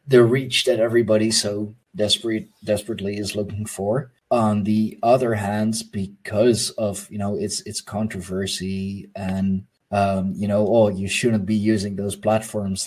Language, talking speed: English, 150 wpm